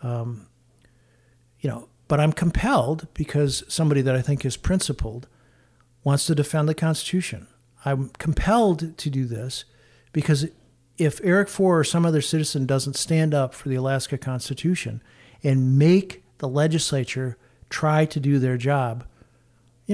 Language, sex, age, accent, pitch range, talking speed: English, male, 50-69, American, 125-155 Hz, 140 wpm